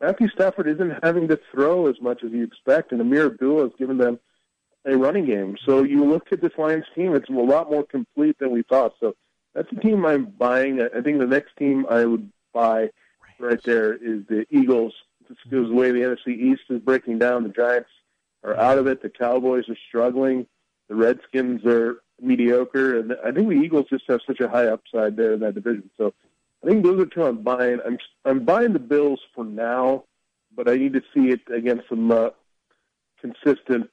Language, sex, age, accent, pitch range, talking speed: English, male, 40-59, American, 115-140 Hz, 210 wpm